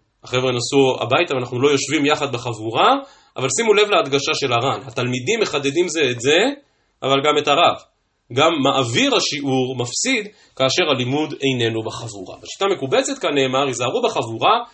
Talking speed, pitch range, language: 150 wpm, 125-180 Hz, Hebrew